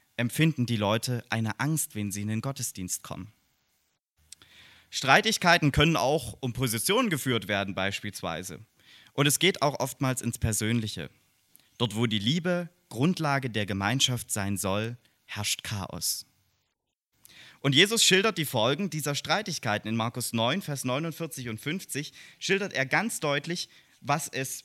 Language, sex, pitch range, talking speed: English, male, 110-155 Hz, 140 wpm